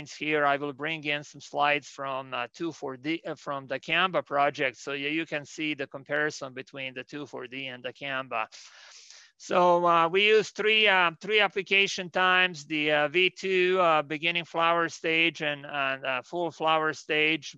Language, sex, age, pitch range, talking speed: English, male, 40-59, 140-165 Hz, 170 wpm